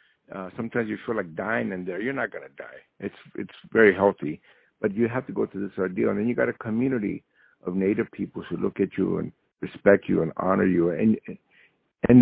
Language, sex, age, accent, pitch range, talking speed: English, male, 60-79, American, 100-120 Hz, 220 wpm